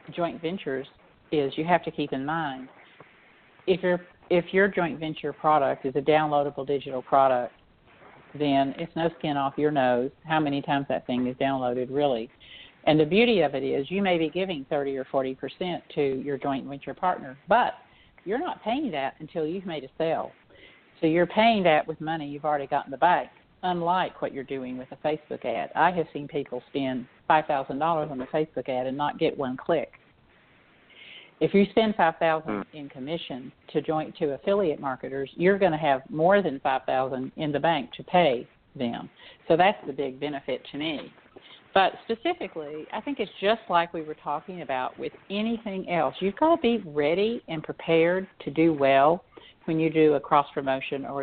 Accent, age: American, 50-69